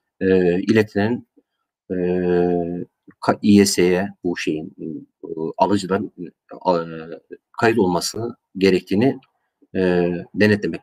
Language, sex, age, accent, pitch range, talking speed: Turkish, male, 50-69, native, 100-140 Hz, 80 wpm